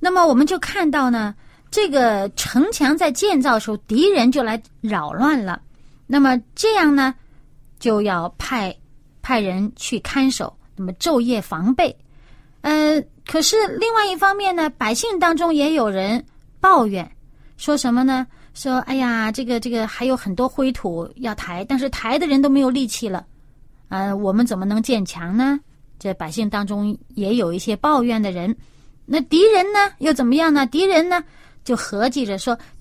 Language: Chinese